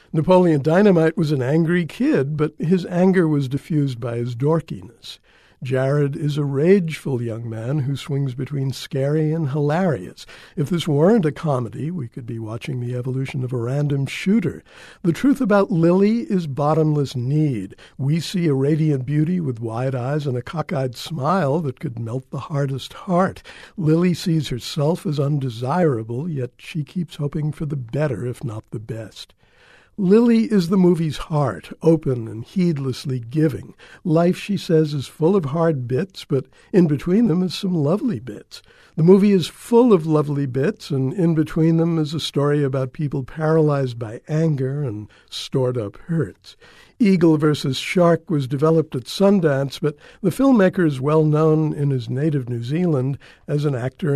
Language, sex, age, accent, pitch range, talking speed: English, male, 60-79, American, 135-170 Hz, 165 wpm